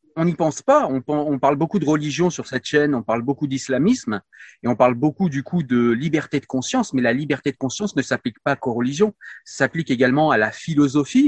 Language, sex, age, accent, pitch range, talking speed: French, male, 30-49, French, 125-165 Hz, 230 wpm